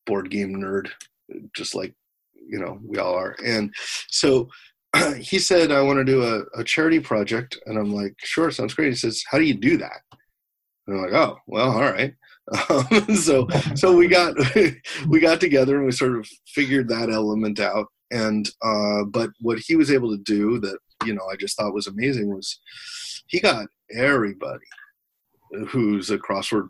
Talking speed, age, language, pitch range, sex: 180 wpm, 40-59, English, 105-135 Hz, male